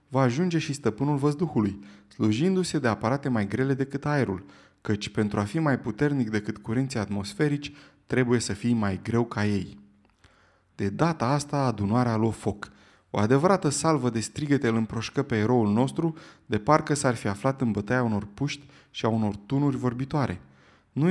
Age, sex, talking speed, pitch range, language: 20-39, male, 170 wpm, 105-140 Hz, Romanian